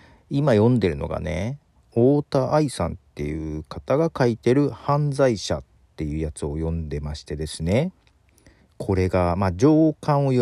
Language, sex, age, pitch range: Japanese, male, 40-59, 85-140 Hz